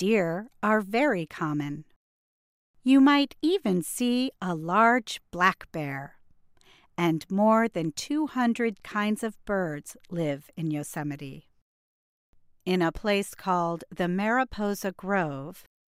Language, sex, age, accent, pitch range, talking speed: English, female, 50-69, American, 155-220 Hz, 110 wpm